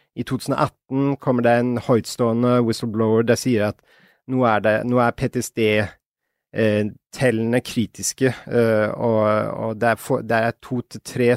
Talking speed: 120 wpm